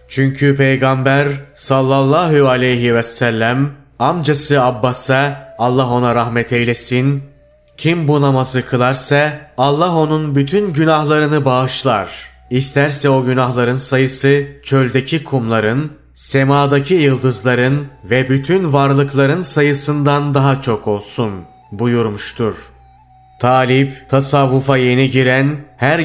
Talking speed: 95 wpm